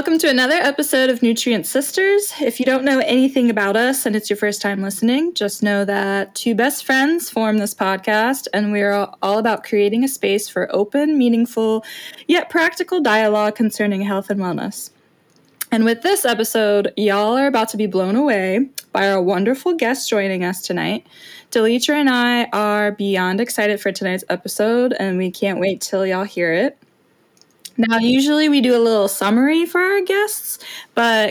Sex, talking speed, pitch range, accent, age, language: female, 180 wpm, 200-265 Hz, American, 10-29, English